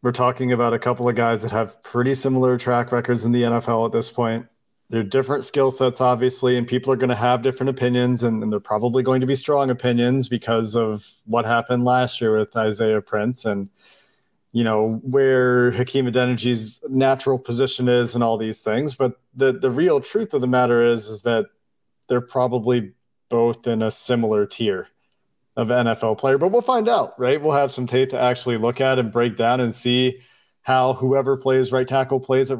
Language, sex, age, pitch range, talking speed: English, male, 40-59, 120-135 Hz, 200 wpm